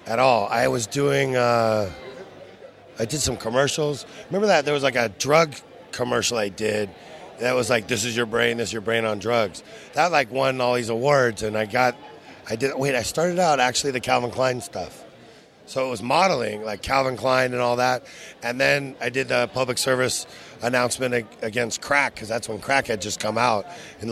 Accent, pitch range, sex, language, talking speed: American, 120-140 Hz, male, English, 205 wpm